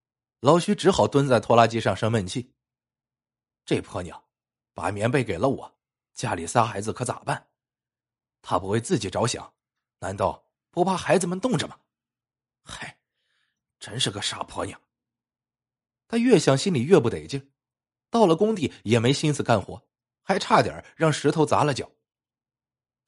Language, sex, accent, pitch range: Chinese, male, native, 120-155 Hz